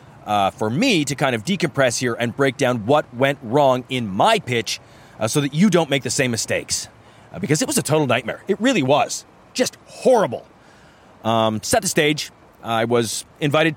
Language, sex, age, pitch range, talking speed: English, male, 30-49, 120-160 Hz, 195 wpm